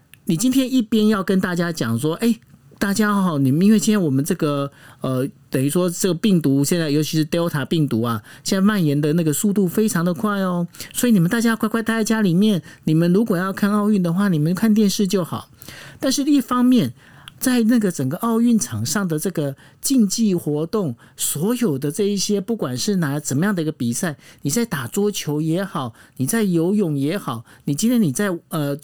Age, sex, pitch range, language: 50-69, male, 145-215 Hz, Chinese